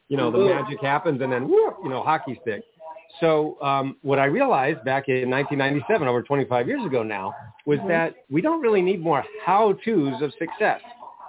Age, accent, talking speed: 40-59, American, 180 wpm